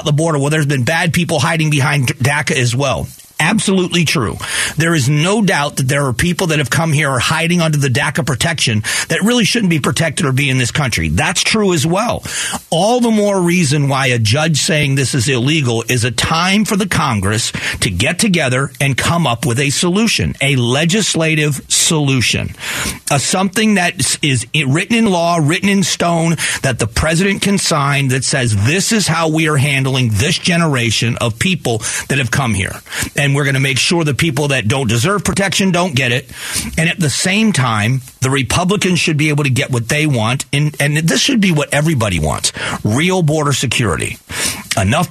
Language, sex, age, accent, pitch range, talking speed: English, male, 40-59, American, 130-175 Hz, 200 wpm